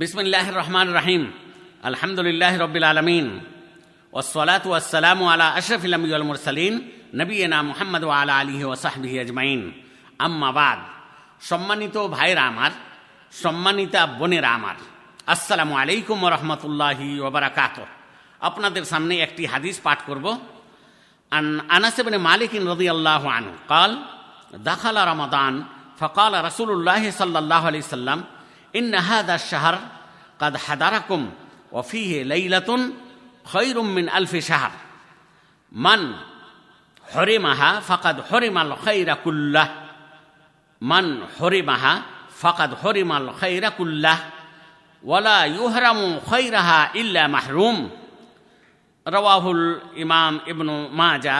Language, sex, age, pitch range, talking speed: Bengali, male, 50-69, 150-190 Hz, 45 wpm